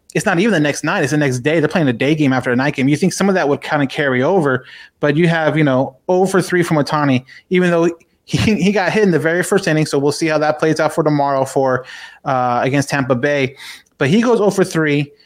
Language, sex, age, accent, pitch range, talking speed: English, male, 30-49, American, 140-170 Hz, 280 wpm